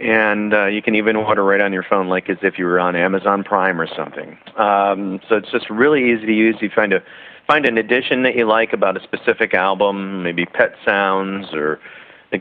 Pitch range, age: 95-110 Hz, 40-59